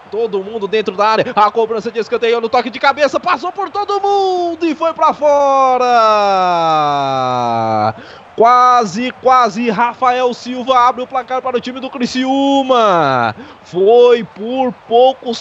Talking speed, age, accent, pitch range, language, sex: 140 wpm, 20-39, Brazilian, 170-235 Hz, Portuguese, male